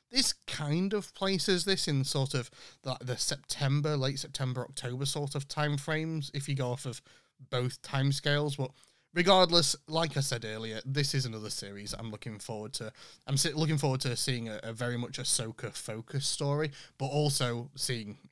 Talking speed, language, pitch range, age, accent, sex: 180 wpm, English, 120-150 Hz, 30-49, British, male